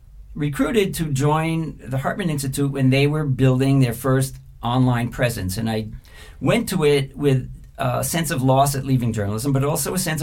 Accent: American